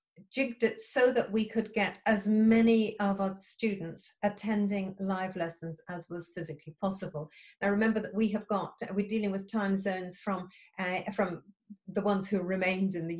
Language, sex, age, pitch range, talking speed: English, female, 40-59, 180-215 Hz, 175 wpm